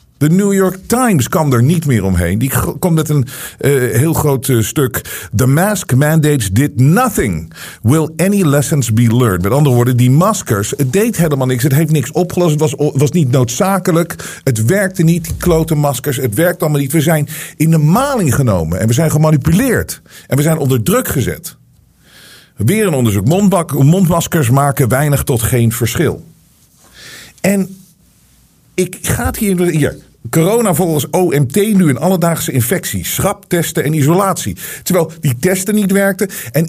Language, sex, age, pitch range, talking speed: Dutch, male, 50-69, 125-180 Hz, 165 wpm